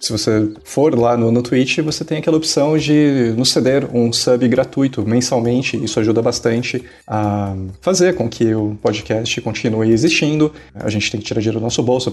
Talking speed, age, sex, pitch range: 190 wpm, 20-39, male, 115-140 Hz